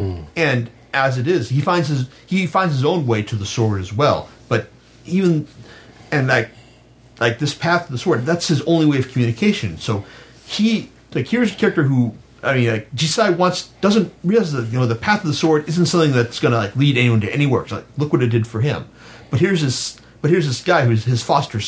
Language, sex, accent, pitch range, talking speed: English, male, American, 115-145 Hz, 230 wpm